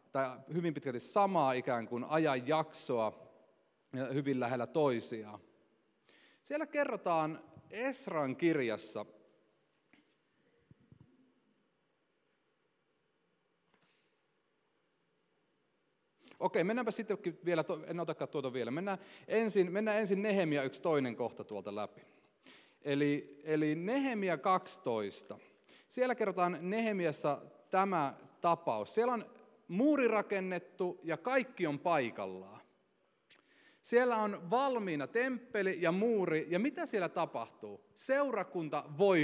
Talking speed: 95 wpm